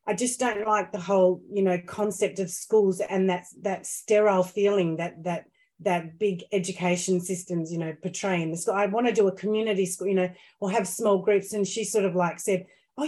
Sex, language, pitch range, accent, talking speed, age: female, English, 180-220 Hz, Australian, 215 wpm, 30-49